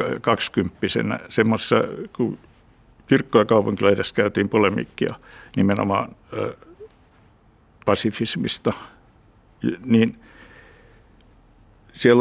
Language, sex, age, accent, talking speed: Finnish, male, 60-79, native, 65 wpm